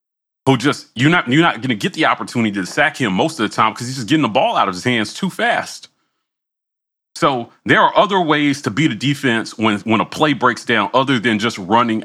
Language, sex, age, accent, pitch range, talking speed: English, male, 30-49, American, 115-160 Hz, 245 wpm